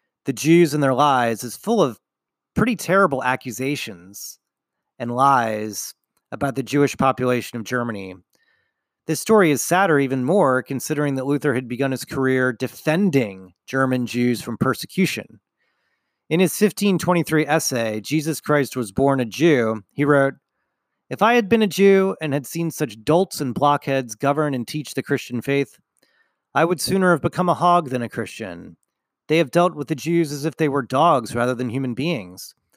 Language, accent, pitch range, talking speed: English, American, 125-165 Hz, 170 wpm